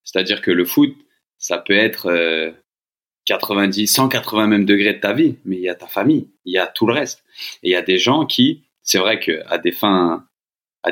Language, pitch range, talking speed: French, 95-110 Hz, 215 wpm